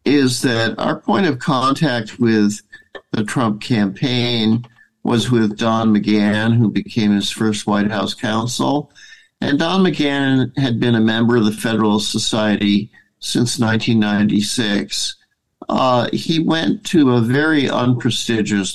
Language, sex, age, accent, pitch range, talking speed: English, male, 50-69, American, 105-130 Hz, 130 wpm